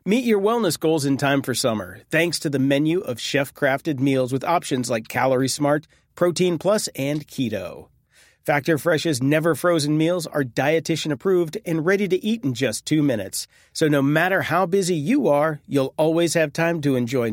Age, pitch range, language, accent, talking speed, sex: 40-59, 130-165 Hz, English, American, 180 wpm, male